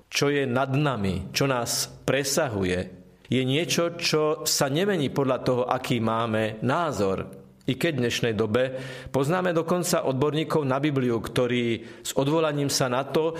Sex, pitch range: male, 120-160 Hz